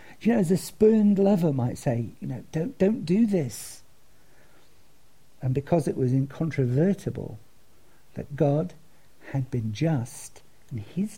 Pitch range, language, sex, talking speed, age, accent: 115-155 Hz, English, male, 140 wpm, 50-69, British